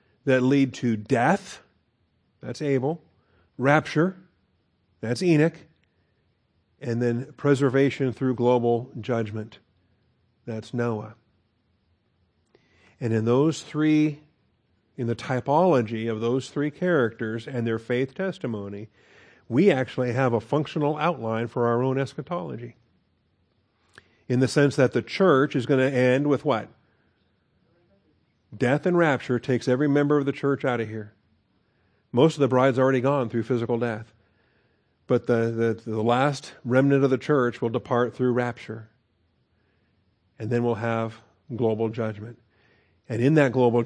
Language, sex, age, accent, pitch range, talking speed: English, male, 50-69, American, 110-135 Hz, 135 wpm